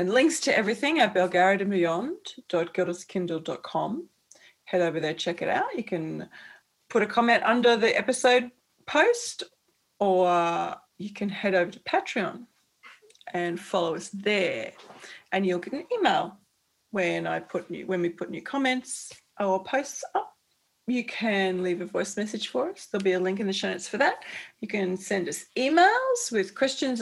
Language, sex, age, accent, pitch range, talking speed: English, female, 30-49, Australian, 185-255 Hz, 165 wpm